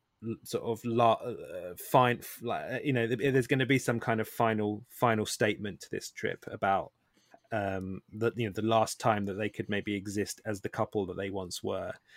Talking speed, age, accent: 195 wpm, 20-39, British